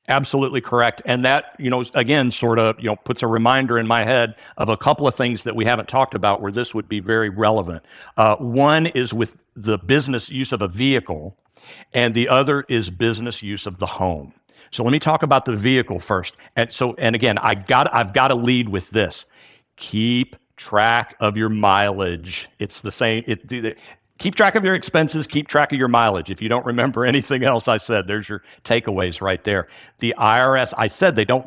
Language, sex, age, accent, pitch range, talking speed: English, male, 50-69, American, 105-135 Hz, 215 wpm